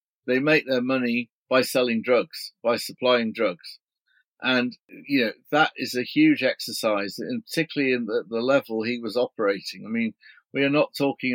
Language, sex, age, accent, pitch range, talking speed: English, male, 50-69, British, 120-140 Hz, 175 wpm